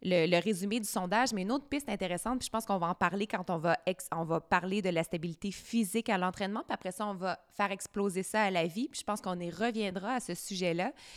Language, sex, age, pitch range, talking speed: French, female, 20-39, 170-210 Hz, 270 wpm